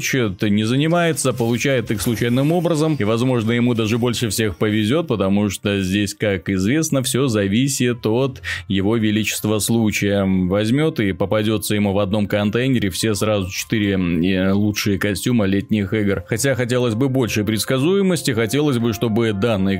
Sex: male